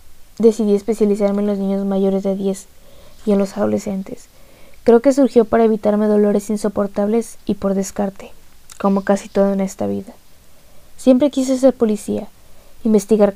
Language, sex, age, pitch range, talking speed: Spanish, female, 20-39, 200-220 Hz, 150 wpm